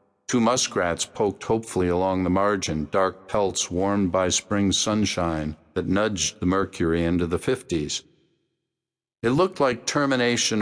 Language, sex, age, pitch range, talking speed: English, male, 60-79, 90-110 Hz, 135 wpm